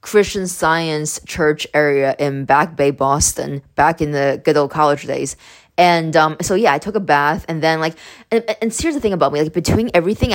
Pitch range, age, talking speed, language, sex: 145-180 Hz, 20-39, 215 wpm, English, female